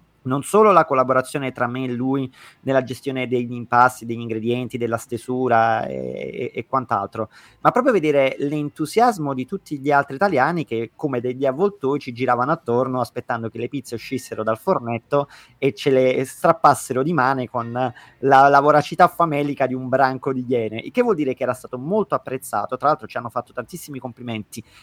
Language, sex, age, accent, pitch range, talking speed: Italian, male, 30-49, native, 125-170 Hz, 180 wpm